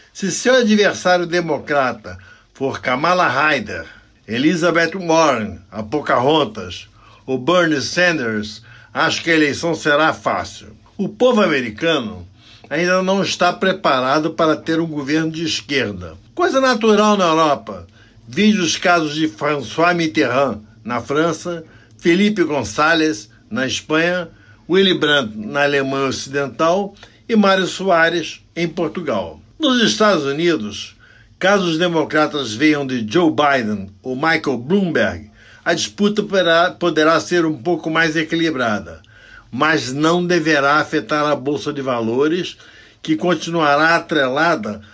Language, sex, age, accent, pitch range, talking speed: Portuguese, male, 60-79, Brazilian, 130-175 Hz, 120 wpm